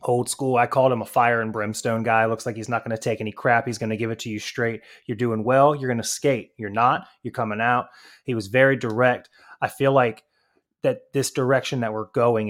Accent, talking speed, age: American, 250 wpm, 20-39